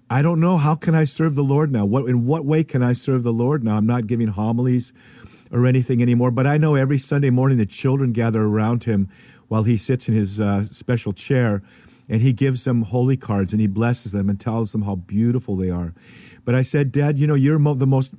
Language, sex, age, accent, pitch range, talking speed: English, male, 50-69, American, 115-135 Hz, 240 wpm